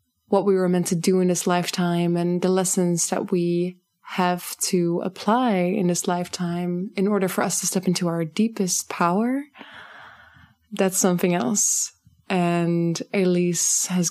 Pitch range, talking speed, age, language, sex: 180-200 Hz, 155 wpm, 20-39, English, female